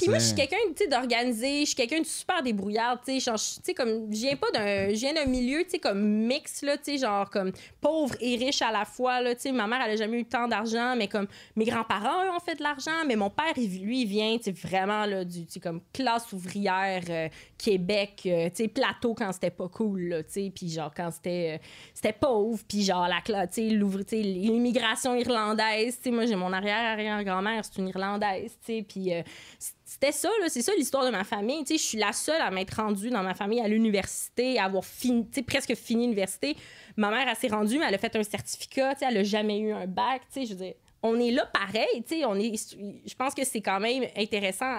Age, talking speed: 20-39, 215 wpm